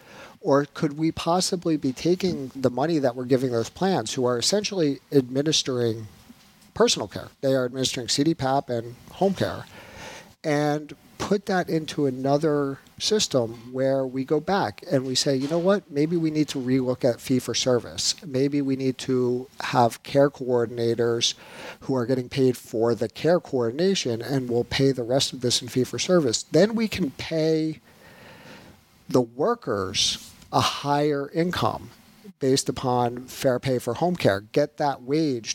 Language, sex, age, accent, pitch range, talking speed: English, male, 50-69, American, 120-145 Hz, 155 wpm